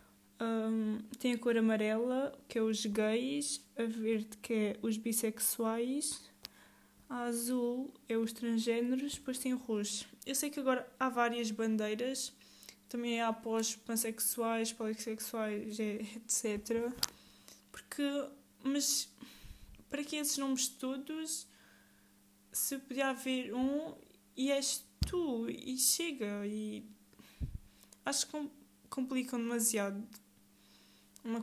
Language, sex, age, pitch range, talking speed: Portuguese, female, 10-29, 210-250 Hz, 115 wpm